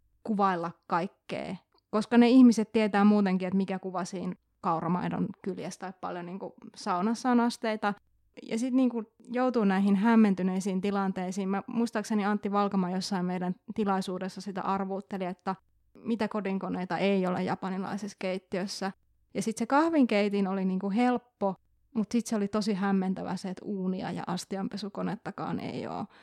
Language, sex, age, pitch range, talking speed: Finnish, female, 20-39, 190-230 Hz, 140 wpm